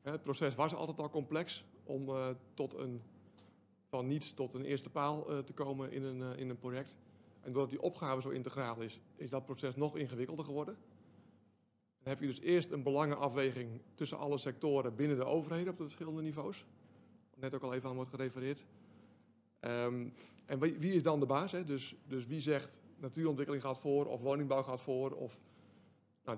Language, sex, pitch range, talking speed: Dutch, male, 125-150 Hz, 195 wpm